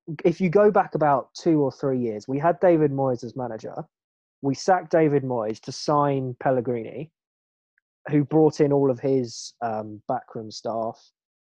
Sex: male